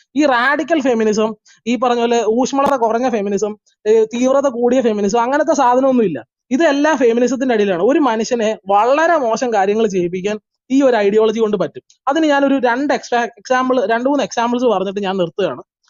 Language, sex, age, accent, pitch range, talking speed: Malayalam, male, 20-39, native, 220-265 Hz, 140 wpm